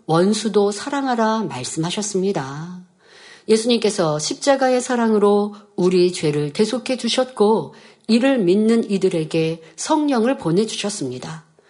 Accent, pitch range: native, 180-245 Hz